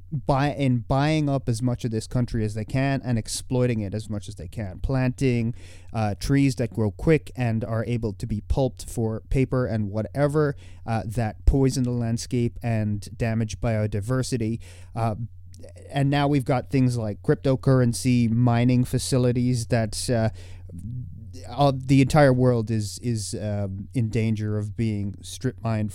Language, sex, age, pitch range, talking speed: English, male, 30-49, 100-125 Hz, 155 wpm